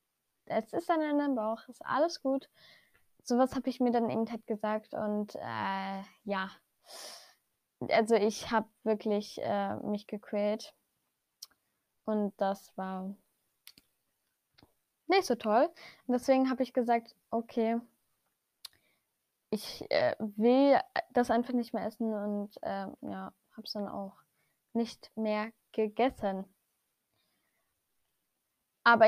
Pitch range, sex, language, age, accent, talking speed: 215-255 Hz, female, German, 10-29, German, 115 wpm